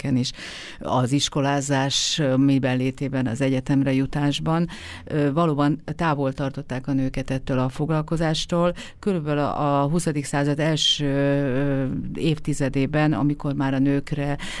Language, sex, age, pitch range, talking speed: Hungarian, female, 50-69, 130-150 Hz, 105 wpm